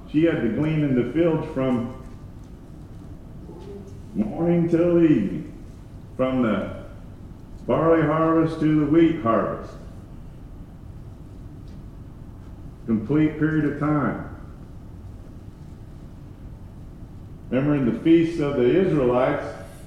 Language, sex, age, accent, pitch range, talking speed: English, male, 50-69, American, 100-145 Hz, 90 wpm